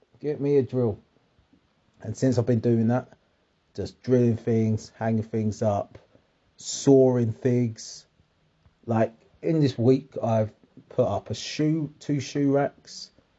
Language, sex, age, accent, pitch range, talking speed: English, male, 30-49, British, 95-125 Hz, 135 wpm